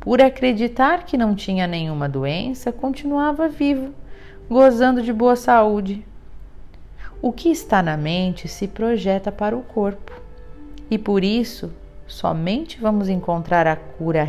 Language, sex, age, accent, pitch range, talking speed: Portuguese, female, 40-59, Brazilian, 155-220 Hz, 130 wpm